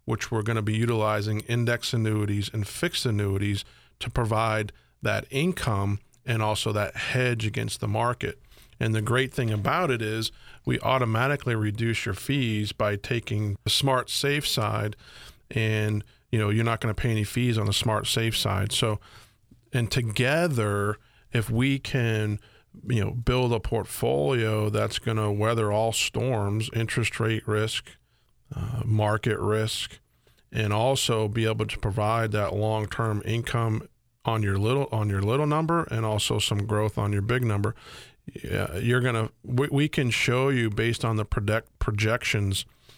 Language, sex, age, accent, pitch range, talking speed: English, male, 40-59, American, 105-120 Hz, 155 wpm